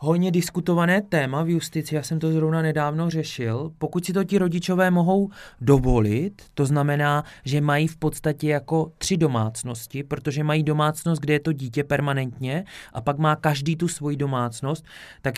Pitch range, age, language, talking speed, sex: 135-155 Hz, 20-39, Czech, 170 wpm, male